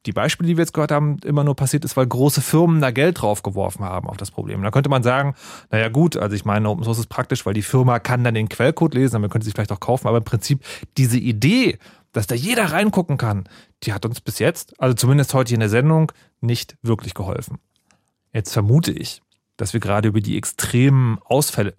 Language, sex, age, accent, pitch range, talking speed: German, male, 30-49, German, 115-155 Hz, 230 wpm